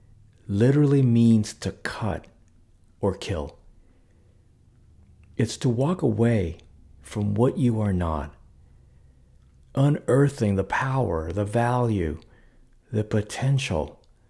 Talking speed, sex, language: 90 wpm, male, English